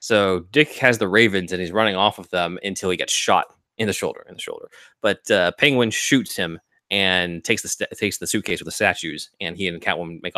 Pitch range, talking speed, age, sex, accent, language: 90-110 Hz, 235 wpm, 20-39, male, American, English